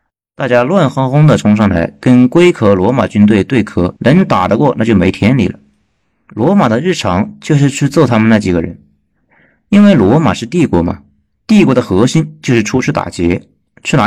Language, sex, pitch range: Chinese, male, 90-135 Hz